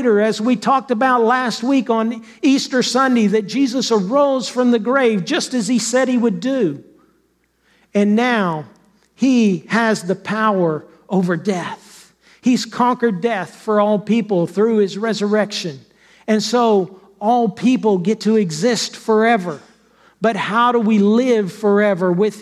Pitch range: 210-245 Hz